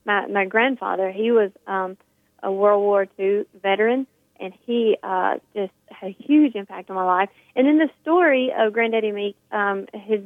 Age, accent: 30-49, American